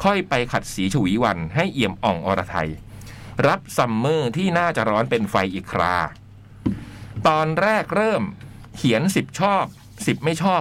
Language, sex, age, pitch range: Thai, male, 60-79, 105-155 Hz